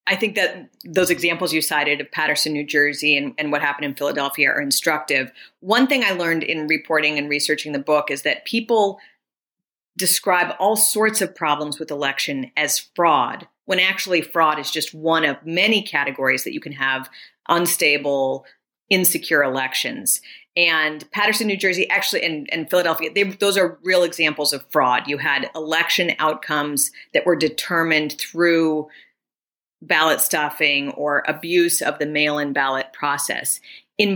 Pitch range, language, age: 145-185 Hz, English, 40-59